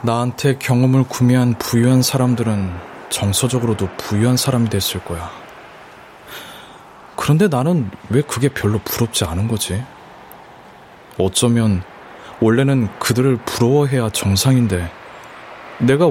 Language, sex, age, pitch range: Korean, male, 20-39, 100-135 Hz